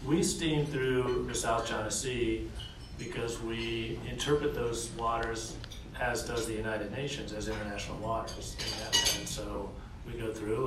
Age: 40-59